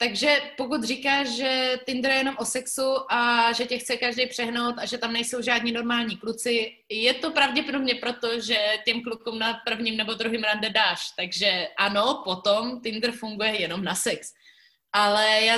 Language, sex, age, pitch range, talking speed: Slovak, female, 20-39, 220-255 Hz, 175 wpm